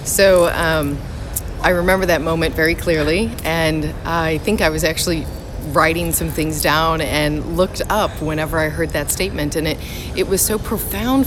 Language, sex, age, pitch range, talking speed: English, female, 30-49, 150-180 Hz, 170 wpm